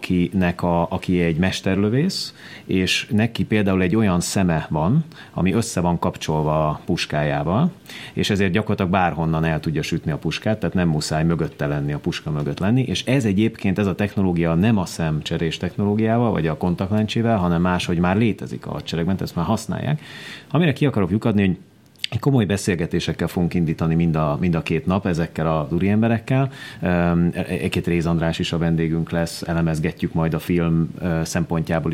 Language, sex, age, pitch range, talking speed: Hungarian, male, 30-49, 80-100 Hz, 160 wpm